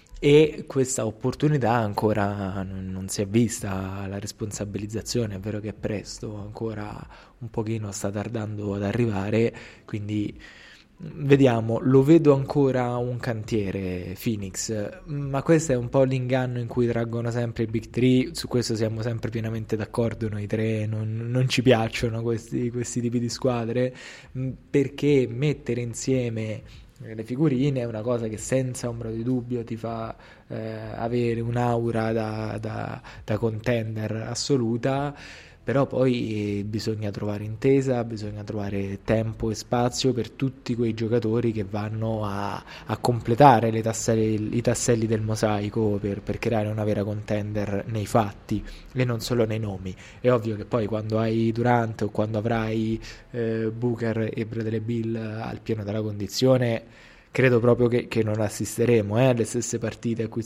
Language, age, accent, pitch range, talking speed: Italian, 20-39, native, 110-120 Hz, 150 wpm